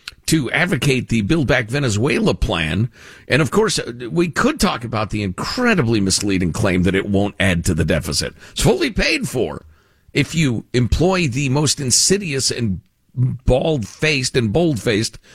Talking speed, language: 155 wpm, English